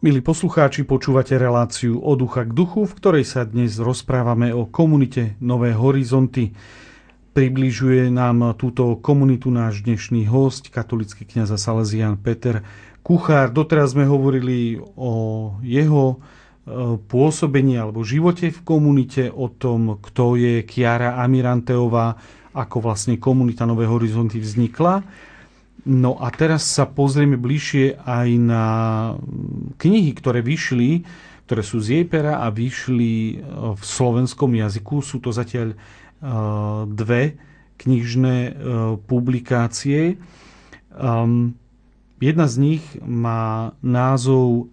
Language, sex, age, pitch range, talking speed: Slovak, male, 40-59, 115-140 Hz, 110 wpm